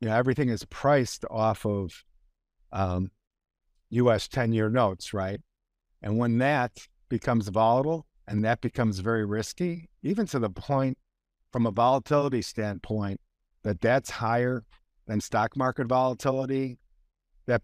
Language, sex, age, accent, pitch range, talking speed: English, male, 50-69, American, 100-125 Hz, 130 wpm